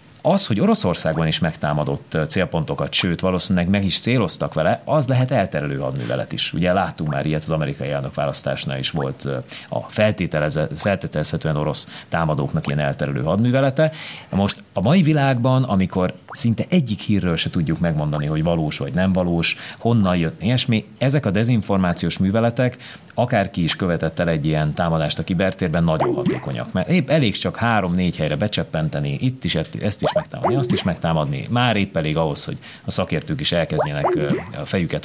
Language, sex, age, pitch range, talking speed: Hungarian, male, 30-49, 80-120 Hz, 155 wpm